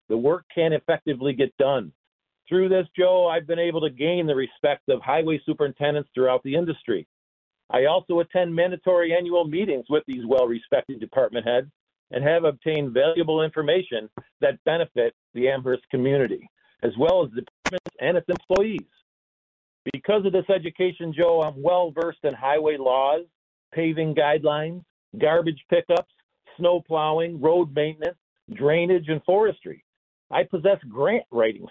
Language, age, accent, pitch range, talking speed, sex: English, 50-69, American, 145-175 Hz, 145 wpm, male